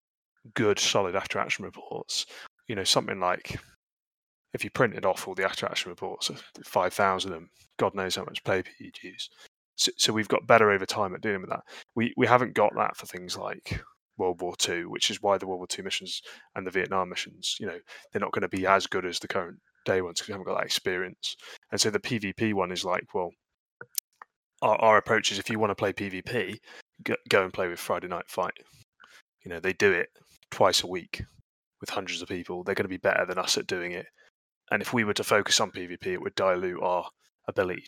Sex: male